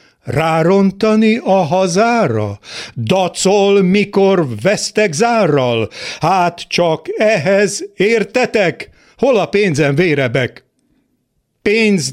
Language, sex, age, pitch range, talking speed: Hungarian, male, 50-69, 150-210 Hz, 80 wpm